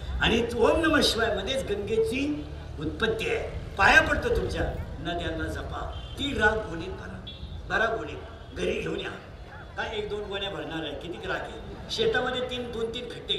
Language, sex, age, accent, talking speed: Marathi, male, 60-79, native, 165 wpm